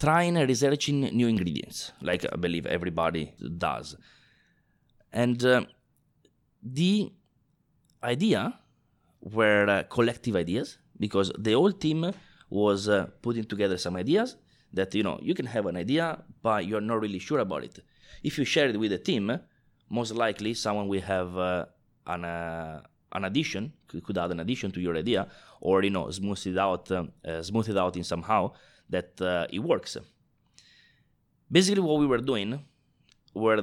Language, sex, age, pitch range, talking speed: English, male, 20-39, 95-140 Hz, 160 wpm